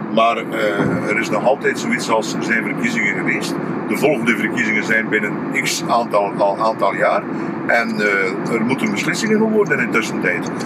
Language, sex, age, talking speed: Dutch, male, 50-69, 175 wpm